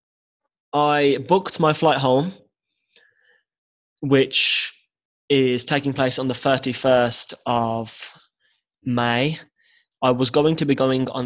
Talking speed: 110 wpm